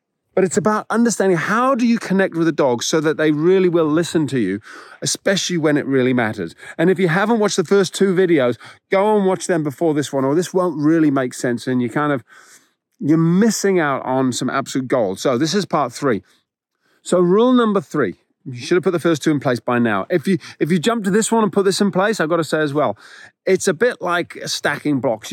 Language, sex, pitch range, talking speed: English, male, 125-180 Hz, 245 wpm